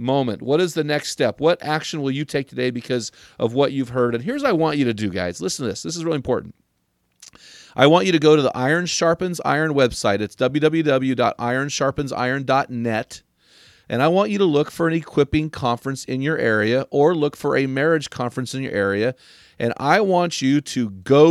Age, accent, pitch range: 40-59, American, 125-155 Hz